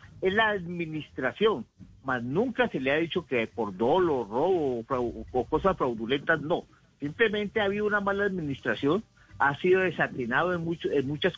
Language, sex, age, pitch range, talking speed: Spanish, male, 50-69, 130-180 Hz, 165 wpm